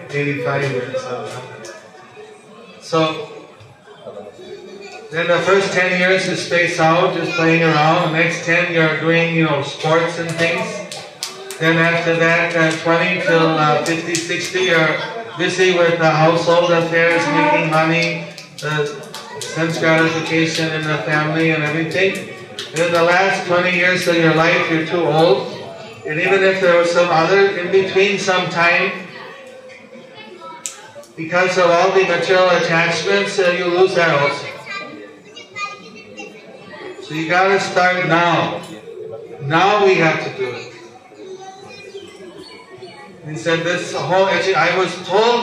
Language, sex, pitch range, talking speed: English, male, 165-195 Hz, 135 wpm